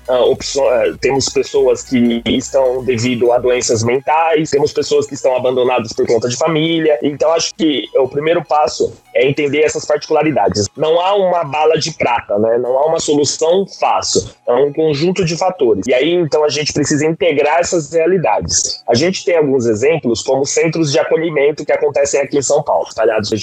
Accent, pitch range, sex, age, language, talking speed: Brazilian, 135-180 Hz, male, 20-39, Portuguese, 175 wpm